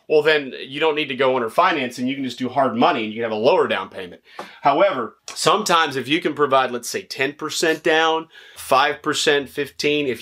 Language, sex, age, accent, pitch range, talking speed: English, male, 30-49, American, 125-160 Hz, 210 wpm